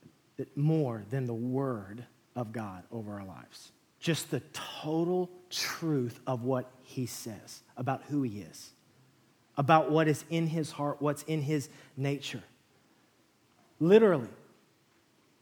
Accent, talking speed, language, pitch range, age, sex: American, 125 wpm, English, 135-170 Hz, 30-49, male